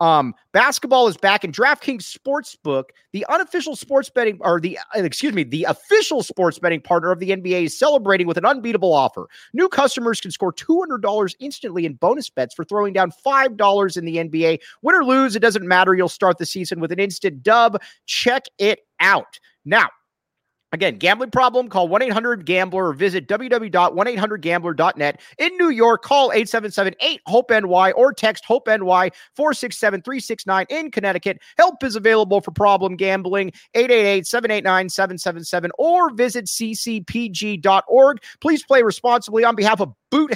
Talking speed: 150 wpm